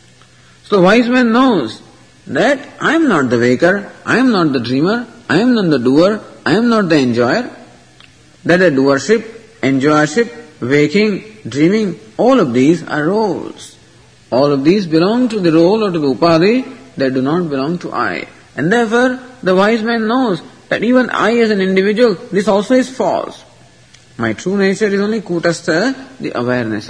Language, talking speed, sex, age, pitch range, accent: English, 170 wpm, male, 50-69, 150-225 Hz, Indian